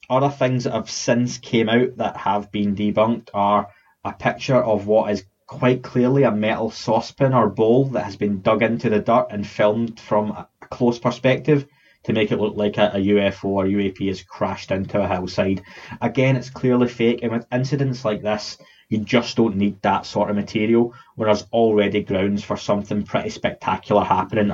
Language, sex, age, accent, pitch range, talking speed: English, male, 20-39, British, 105-125 Hz, 190 wpm